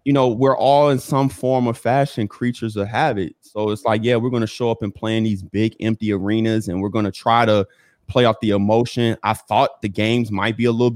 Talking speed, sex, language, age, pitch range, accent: 250 wpm, male, English, 20-39, 105-115 Hz, American